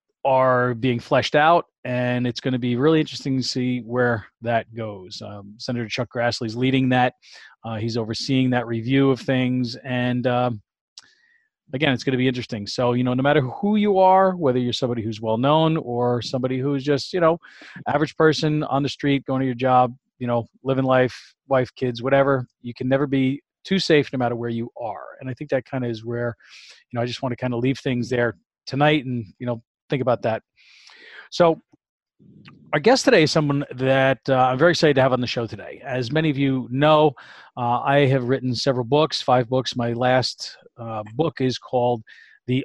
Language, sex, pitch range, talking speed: English, male, 120-140 Hz, 205 wpm